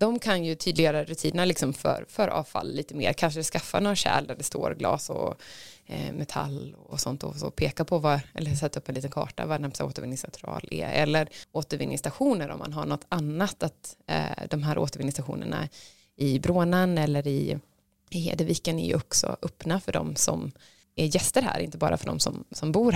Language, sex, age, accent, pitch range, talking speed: Swedish, female, 20-39, native, 145-170 Hz, 195 wpm